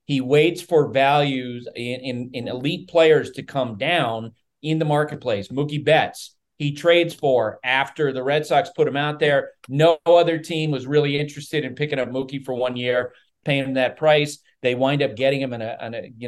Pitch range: 130-160 Hz